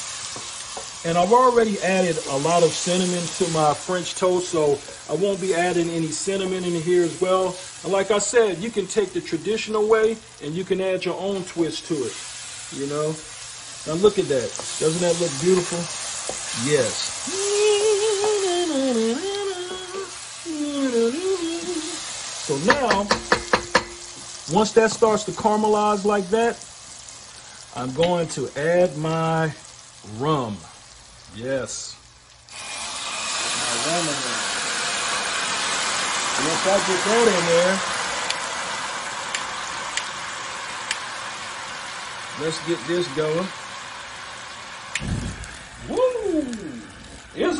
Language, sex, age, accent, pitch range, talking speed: English, male, 40-59, American, 170-240 Hz, 105 wpm